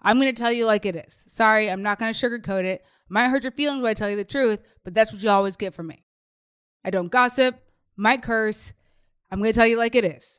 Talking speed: 265 wpm